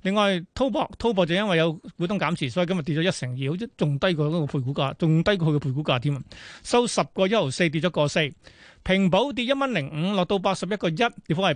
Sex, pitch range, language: male, 155-205 Hz, Chinese